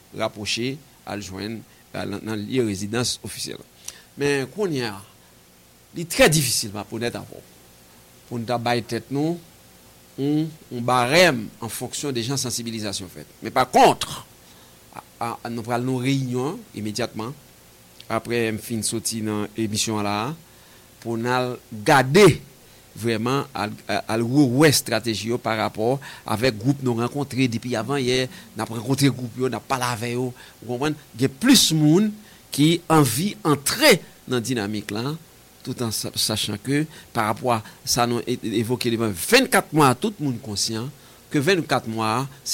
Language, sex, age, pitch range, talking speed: English, male, 50-69, 110-145 Hz, 150 wpm